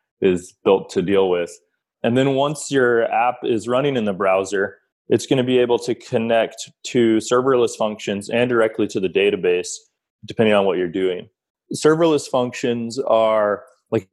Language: English